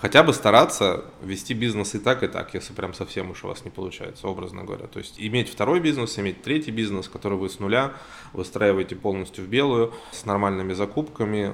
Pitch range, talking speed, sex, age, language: 95-115 Hz, 200 wpm, male, 20-39, Russian